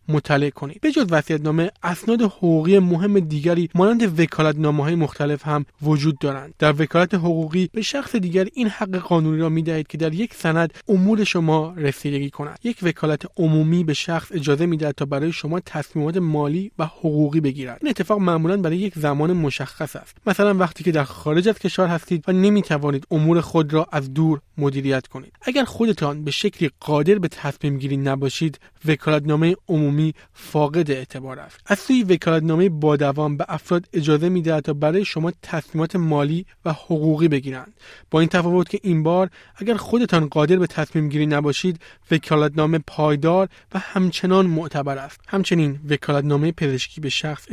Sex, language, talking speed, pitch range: male, Persian, 160 wpm, 145-180 Hz